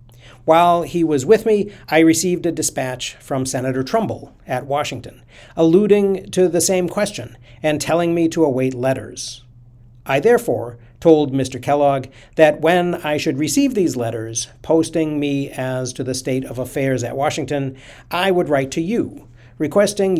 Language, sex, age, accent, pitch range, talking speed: English, male, 50-69, American, 125-165 Hz, 155 wpm